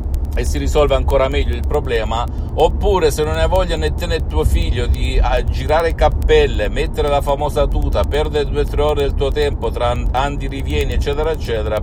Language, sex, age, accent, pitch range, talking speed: Italian, male, 50-69, native, 75-100 Hz, 190 wpm